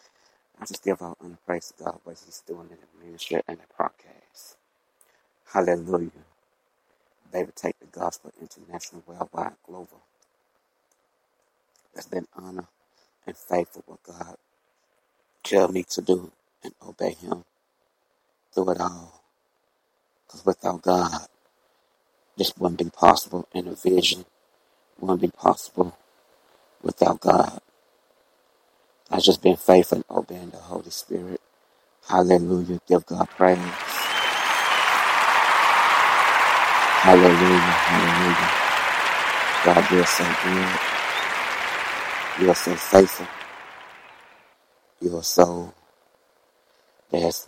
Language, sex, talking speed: English, male, 110 wpm